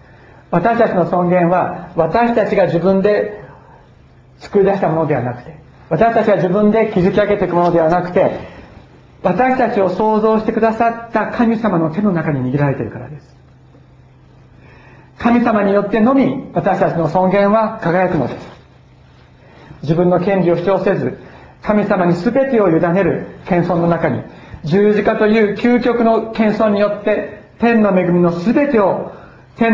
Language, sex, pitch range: Japanese, male, 160-210 Hz